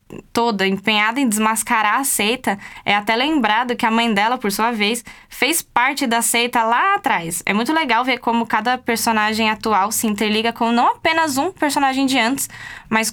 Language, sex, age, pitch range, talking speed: Portuguese, female, 10-29, 195-255 Hz, 185 wpm